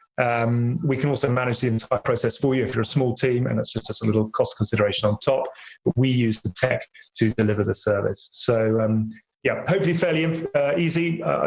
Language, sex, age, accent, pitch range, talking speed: English, male, 30-49, British, 115-155 Hz, 225 wpm